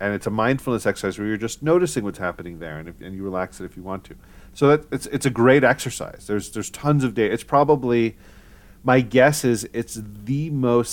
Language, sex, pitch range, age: English, male, 100-130 Hz, 40-59